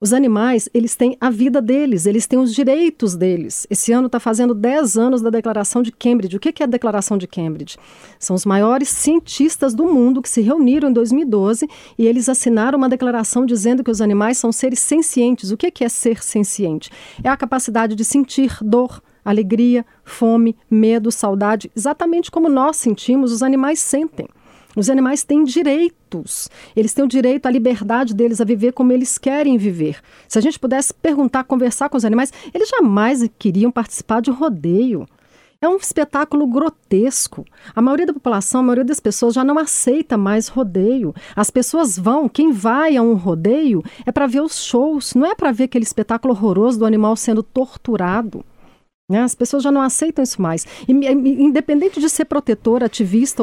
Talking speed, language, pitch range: 180 wpm, Portuguese, 220-280 Hz